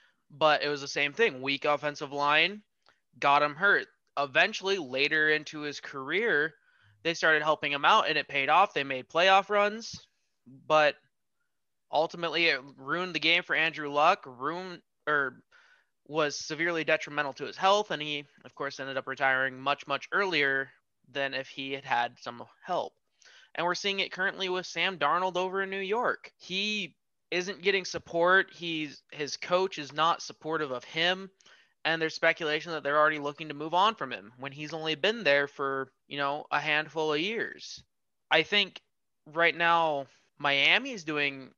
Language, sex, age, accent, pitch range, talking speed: English, male, 20-39, American, 140-170 Hz, 170 wpm